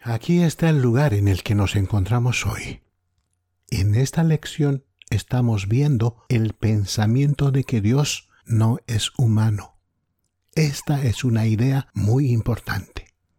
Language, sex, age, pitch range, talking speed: English, male, 60-79, 100-120 Hz, 130 wpm